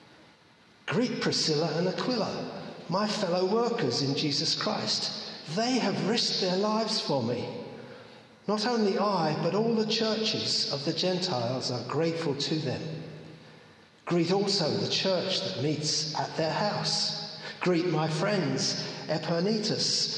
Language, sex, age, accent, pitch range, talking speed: English, male, 50-69, British, 150-200 Hz, 130 wpm